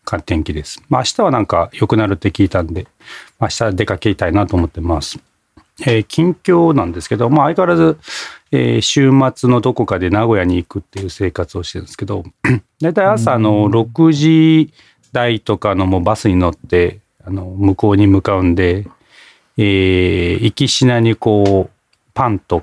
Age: 40-59